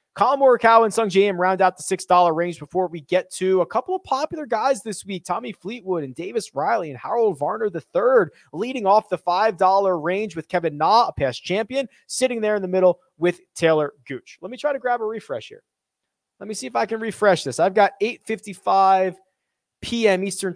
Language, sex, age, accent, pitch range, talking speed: English, male, 30-49, American, 175-245 Hz, 205 wpm